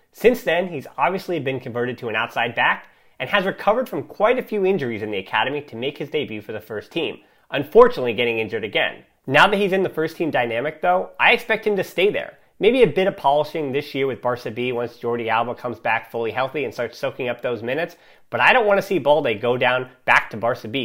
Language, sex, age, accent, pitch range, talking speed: English, male, 30-49, American, 125-185 Hz, 240 wpm